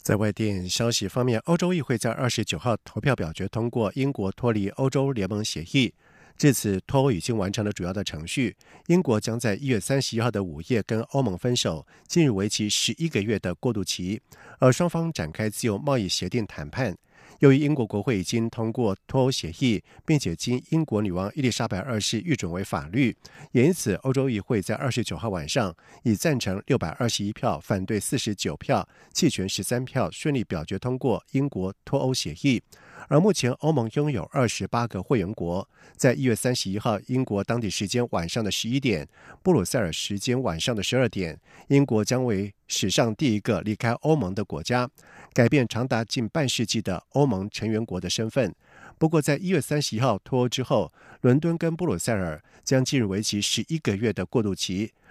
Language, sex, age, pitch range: French, male, 50-69, 100-130 Hz